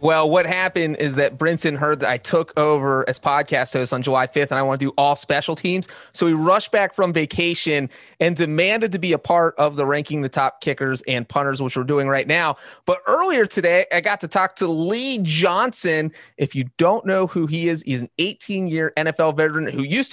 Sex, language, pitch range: male, English, 145-185 Hz